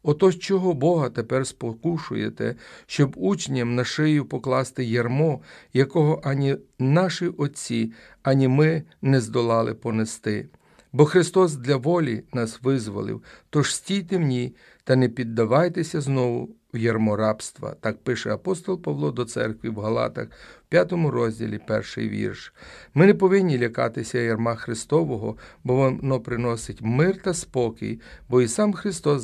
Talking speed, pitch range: 130 wpm, 115-150 Hz